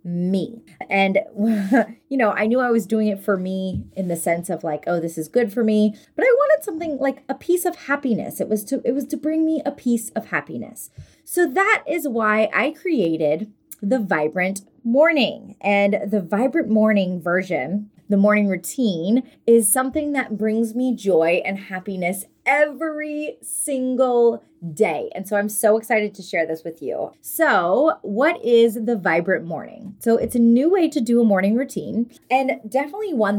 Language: English